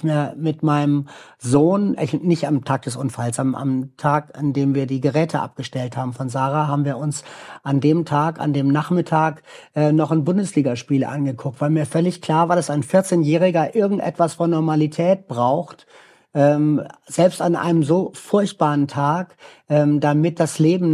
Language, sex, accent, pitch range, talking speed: German, male, German, 145-175 Hz, 165 wpm